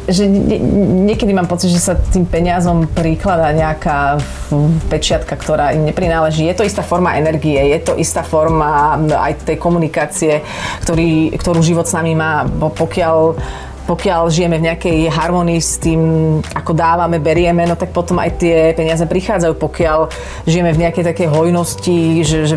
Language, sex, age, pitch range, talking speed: Slovak, female, 30-49, 155-175 Hz, 150 wpm